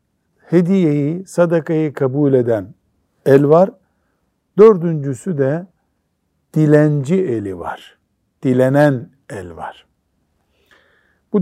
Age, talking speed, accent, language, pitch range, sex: 60-79, 80 wpm, native, Turkish, 125-175 Hz, male